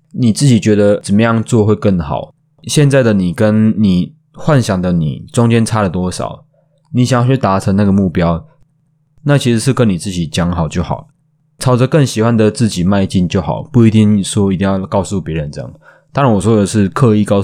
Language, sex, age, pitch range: Chinese, male, 20-39, 100-135 Hz